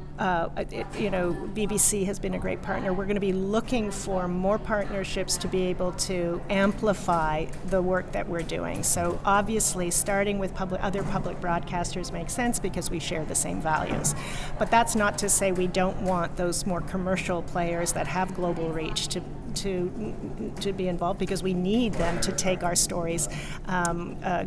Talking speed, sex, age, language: 185 wpm, female, 40-59, English